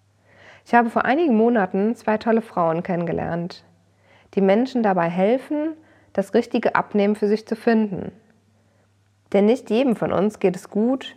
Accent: German